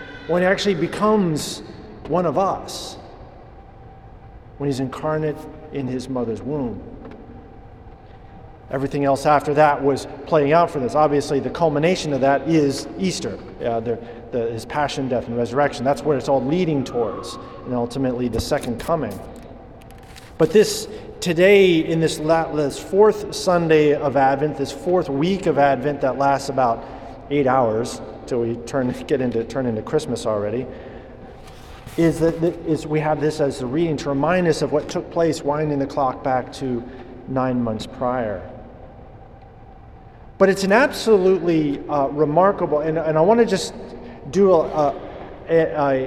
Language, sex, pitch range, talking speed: English, male, 130-170 Hz, 150 wpm